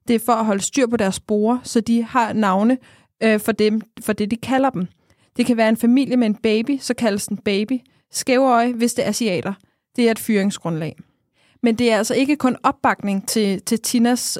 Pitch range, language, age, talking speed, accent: 210-245 Hz, Danish, 20-39, 220 wpm, native